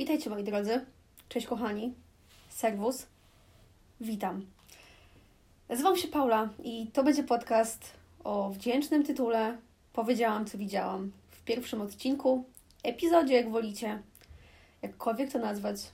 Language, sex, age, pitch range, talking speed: Polish, female, 20-39, 220-260 Hz, 110 wpm